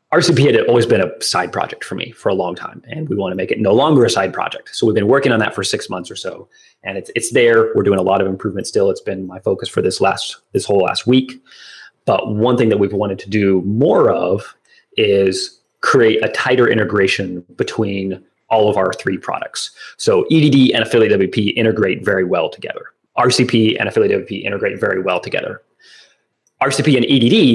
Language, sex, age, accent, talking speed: English, male, 30-49, American, 210 wpm